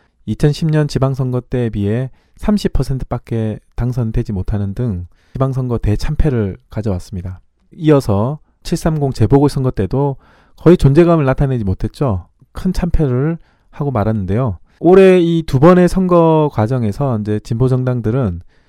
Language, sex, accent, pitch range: Korean, male, native, 105-150 Hz